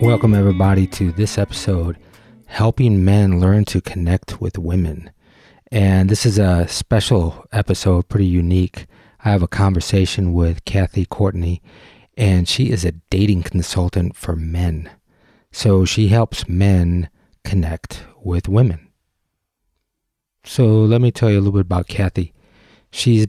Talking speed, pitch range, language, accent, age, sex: 135 wpm, 90-105 Hz, English, American, 40-59, male